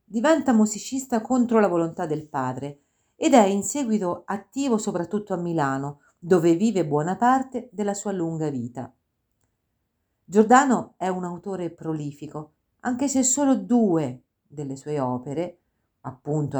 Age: 50-69